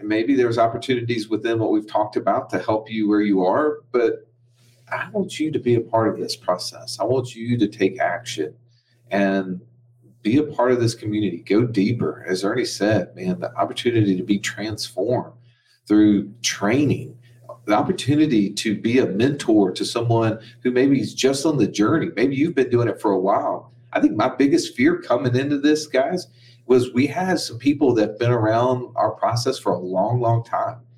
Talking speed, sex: 190 wpm, male